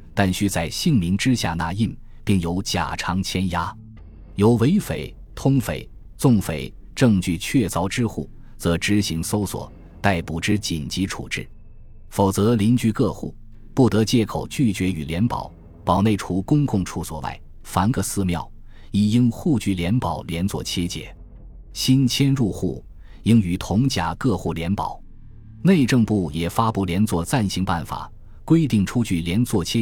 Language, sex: Chinese, male